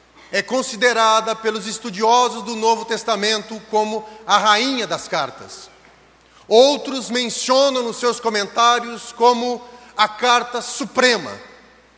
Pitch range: 235-275 Hz